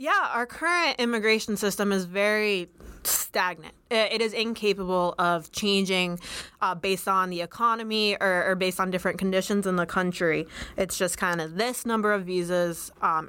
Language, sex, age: English, female, 20-39